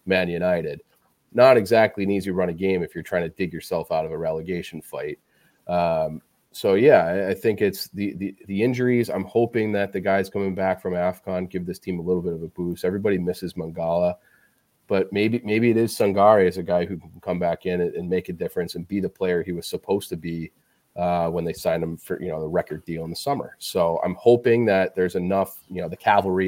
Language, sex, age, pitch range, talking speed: English, male, 30-49, 90-100 Hz, 230 wpm